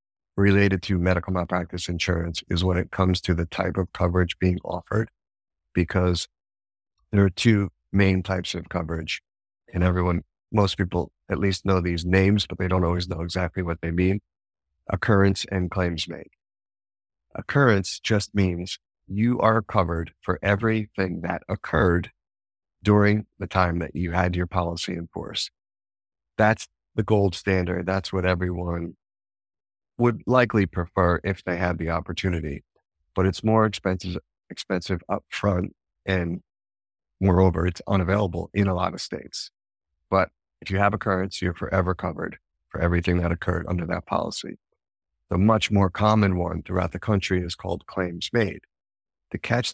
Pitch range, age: 85-100 Hz, 50-69